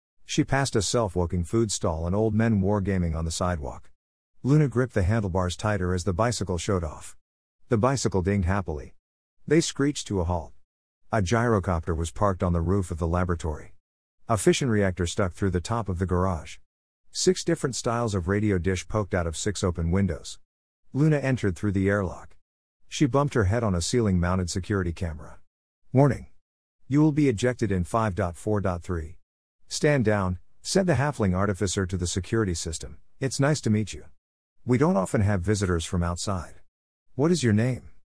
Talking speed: 175 wpm